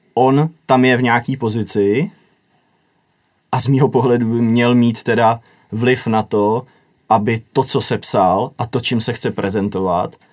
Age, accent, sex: 30-49, native, male